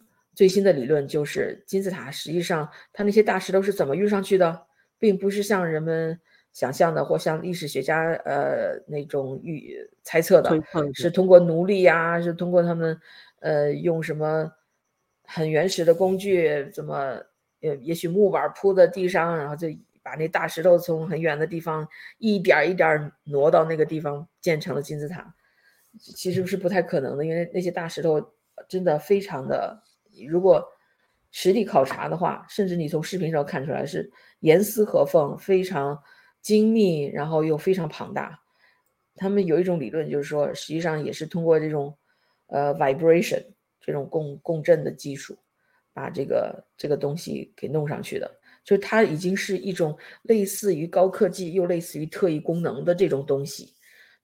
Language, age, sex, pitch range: Chinese, 50-69, female, 155-190 Hz